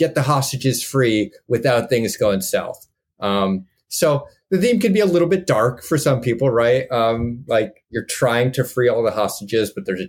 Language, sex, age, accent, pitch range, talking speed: English, male, 30-49, American, 100-130 Hz, 200 wpm